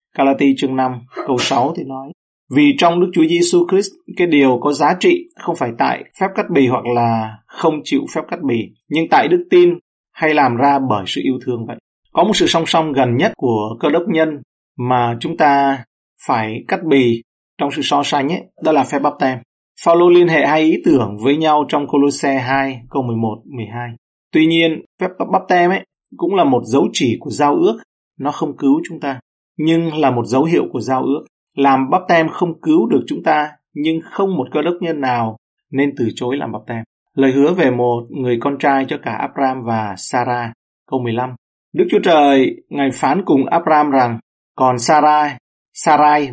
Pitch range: 125-160 Hz